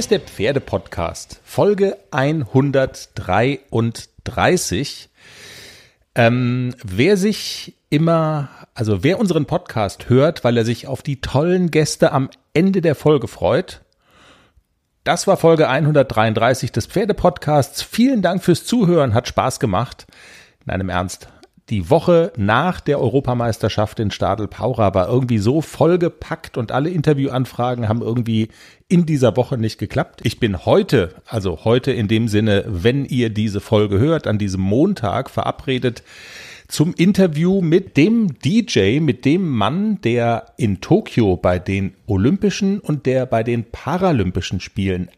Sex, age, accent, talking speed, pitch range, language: male, 40-59, German, 135 wpm, 110-165 Hz, German